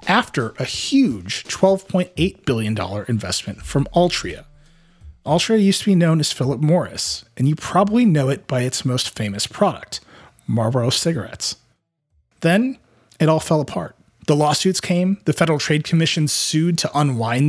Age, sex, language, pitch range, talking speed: 30-49, male, English, 130-175 Hz, 150 wpm